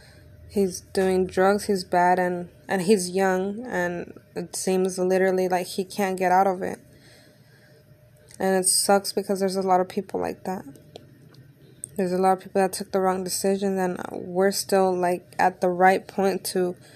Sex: female